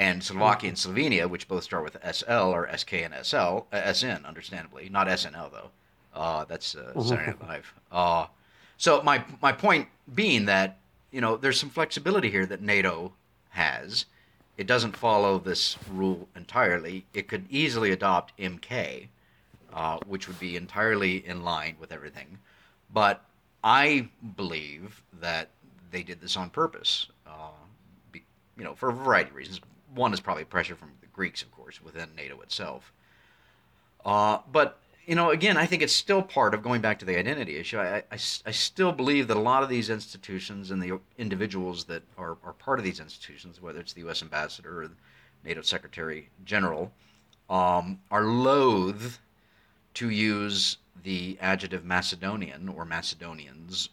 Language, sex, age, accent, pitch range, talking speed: English, male, 50-69, American, 90-110 Hz, 165 wpm